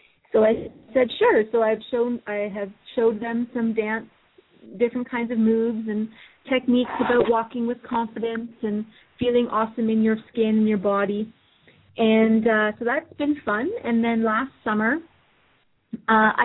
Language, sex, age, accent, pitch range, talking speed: English, female, 30-49, American, 210-240 Hz, 155 wpm